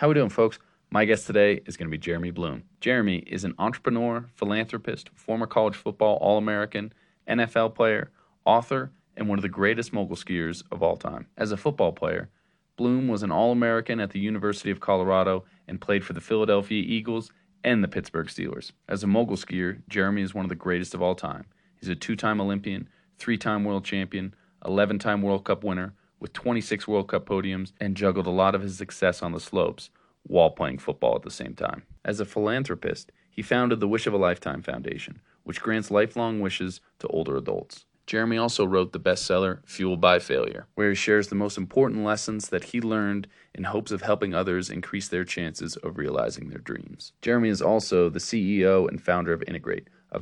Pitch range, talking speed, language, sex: 95-110 Hz, 195 wpm, English, male